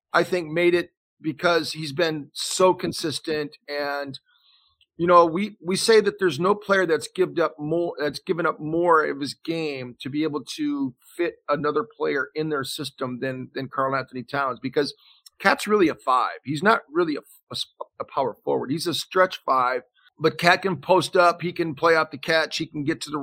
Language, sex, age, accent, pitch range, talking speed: English, male, 40-59, American, 145-175 Hz, 200 wpm